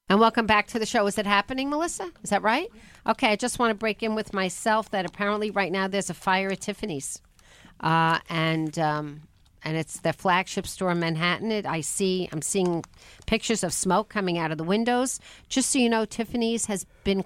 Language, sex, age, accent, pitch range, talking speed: English, female, 50-69, American, 175-210 Hz, 210 wpm